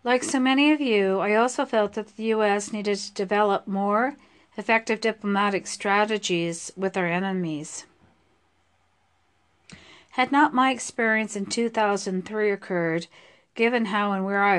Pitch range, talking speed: 190-230 Hz, 135 wpm